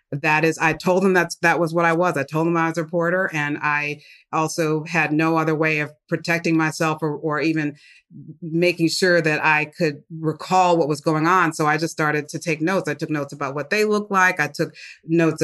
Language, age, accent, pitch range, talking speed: English, 30-49, American, 150-165 Hz, 230 wpm